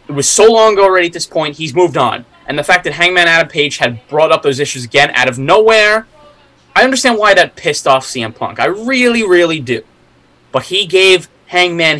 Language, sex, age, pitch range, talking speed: English, male, 20-39, 130-200 Hz, 220 wpm